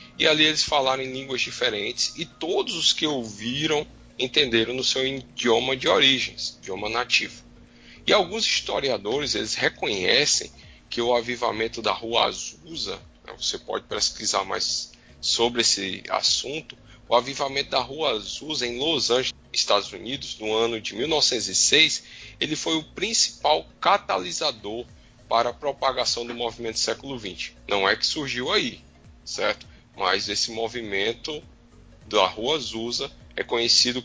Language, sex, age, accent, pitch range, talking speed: Portuguese, male, 10-29, Brazilian, 110-130 Hz, 140 wpm